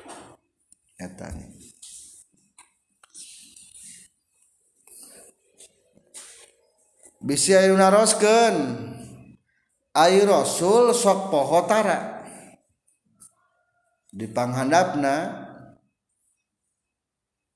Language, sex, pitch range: Indonesian, male, 135-200 Hz